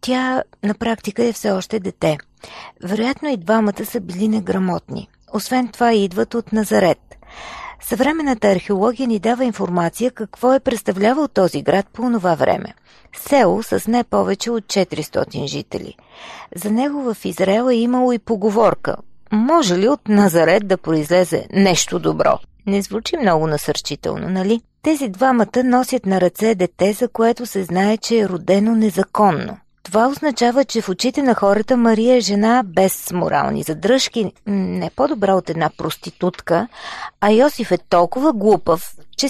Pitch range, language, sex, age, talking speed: 185-245 Hz, Bulgarian, female, 40-59, 150 wpm